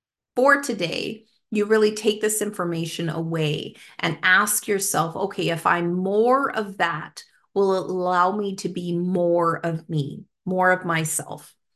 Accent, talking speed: American, 150 wpm